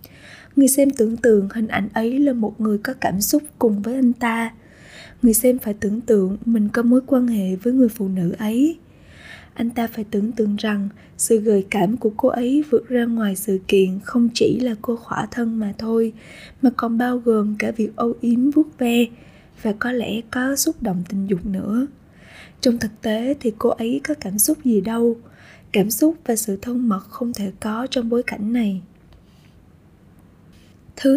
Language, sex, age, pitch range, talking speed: Vietnamese, female, 20-39, 210-255 Hz, 195 wpm